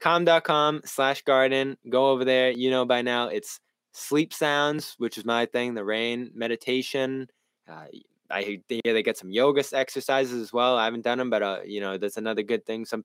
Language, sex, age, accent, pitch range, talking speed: English, male, 10-29, American, 105-130 Hz, 200 wpm